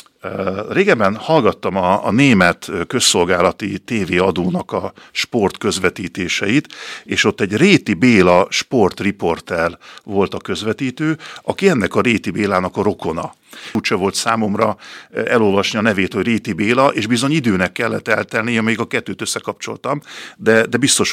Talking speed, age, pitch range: 135 wpm, 50-69, 95-115 Hz